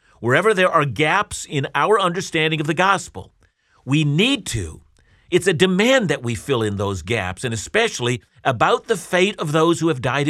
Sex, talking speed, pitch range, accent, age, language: male, 185 wpm, 115-160 Hz, American, 50-69, English